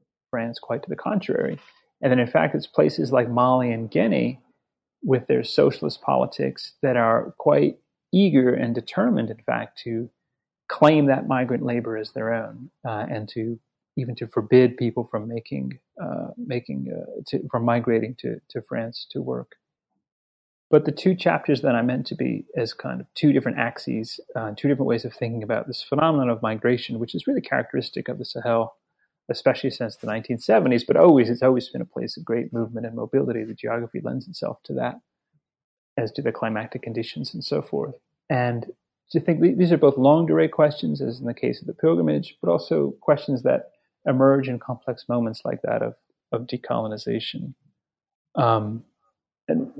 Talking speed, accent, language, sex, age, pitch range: 180 wpm, American, English, male, 30-49, 115-135 Hz